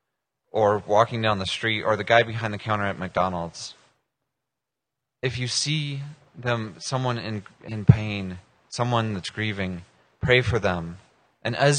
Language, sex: English, male